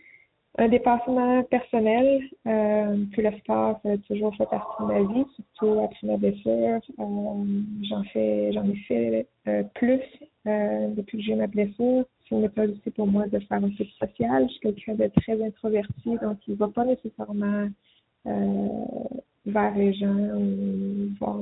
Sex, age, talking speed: female, 20-39, 170 wpm